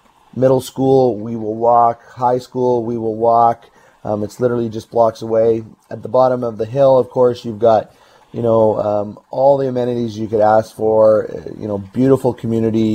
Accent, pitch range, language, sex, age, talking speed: American, 110-125 Hz, English, male, 30-49, 190 wpm